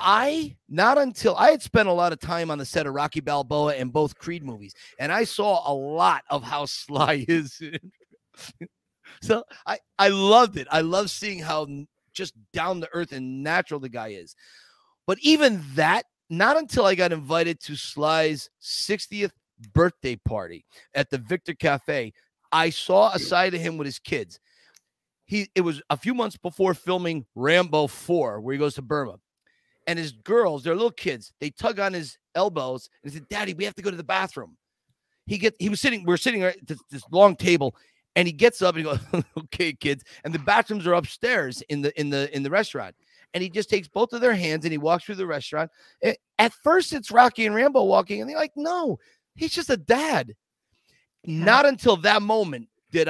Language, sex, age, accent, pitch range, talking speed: English, male, 30-49, American, 150-205 Hz, 200 wpm